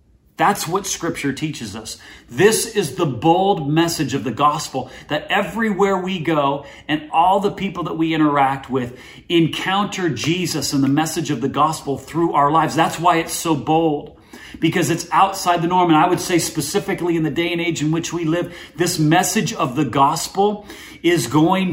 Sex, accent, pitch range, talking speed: male, American, 150-185 Hz, 185 wpm